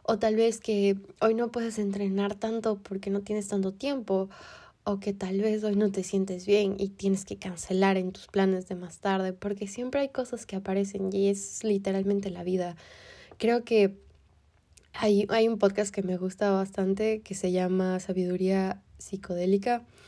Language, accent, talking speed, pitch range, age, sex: Spanish, Mexican, 175 wpm, 185-205 Hz, 20-39, female